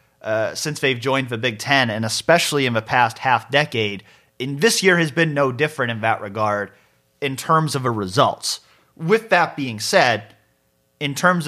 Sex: male